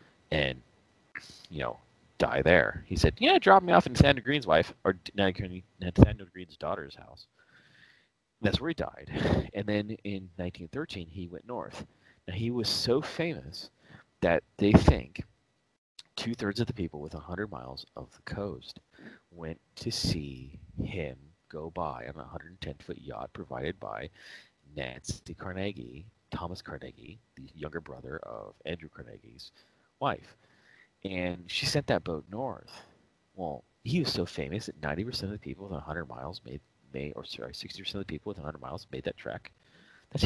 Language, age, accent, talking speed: English, 30-49, American, 165 wpm